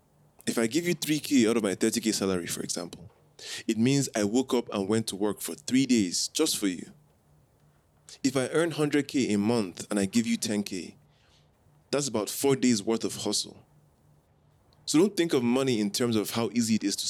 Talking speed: 205 wpm